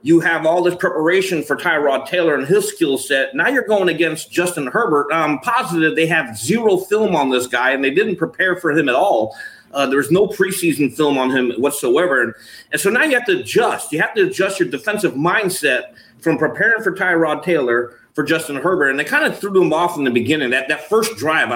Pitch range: 135-180 Hz